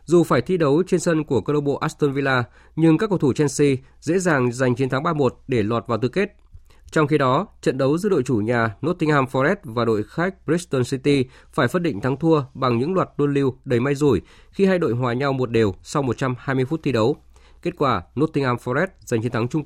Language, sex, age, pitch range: Vietnamese, male, 20-39, 125-160 Hz